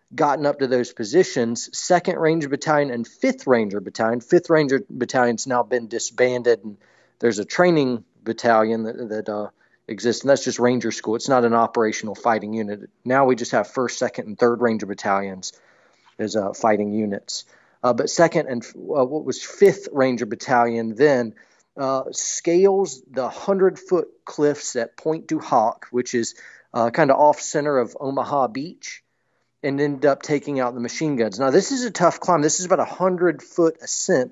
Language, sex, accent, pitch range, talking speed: English, male, American, 115-155 Hz, 180 wpm